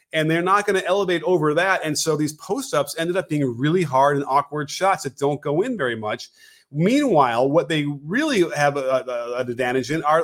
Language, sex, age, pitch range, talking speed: English, male, 30-49, 130-180 Hz, 205 wpm